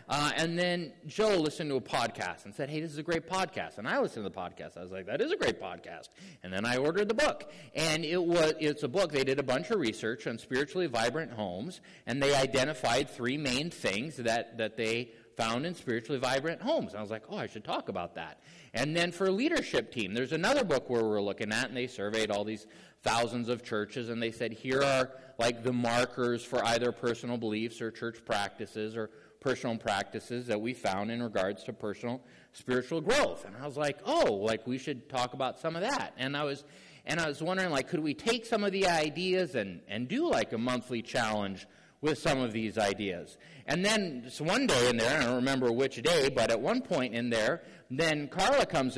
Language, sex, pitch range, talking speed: English, male, 115-155 Hz, 225 wpm